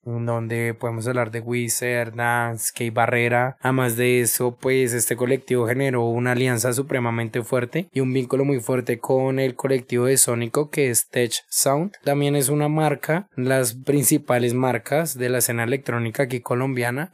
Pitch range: 120-135 Hz